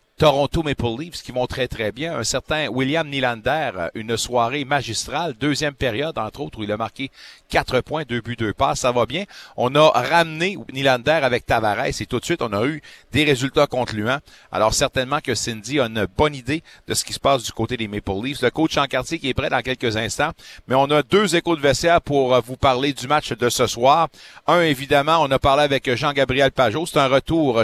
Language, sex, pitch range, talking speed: French, male, 115-145 Hz, 220 wpm